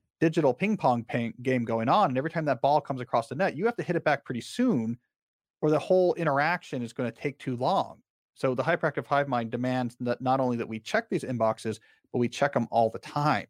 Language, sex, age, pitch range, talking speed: English, male, 40-59, 115-150 Hz, 240 wpm